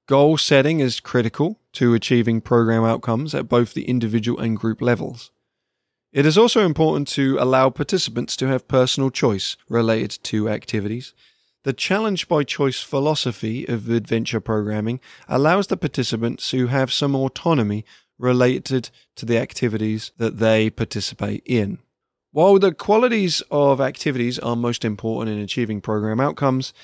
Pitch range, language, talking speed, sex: 115-150 Hz, English, 145 wpm, male